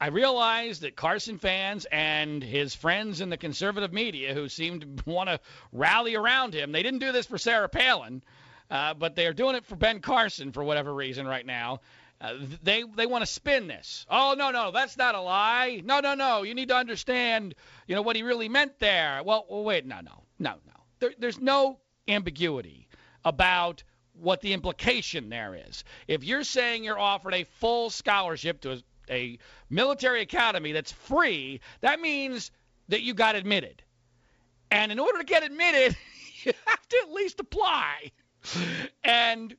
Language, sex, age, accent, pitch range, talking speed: English, male, 40-59, American, 170-265 Hz, 180 wpm